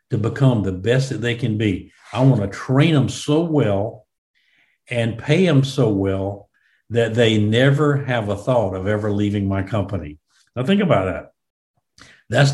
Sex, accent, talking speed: male, American, 170 wpm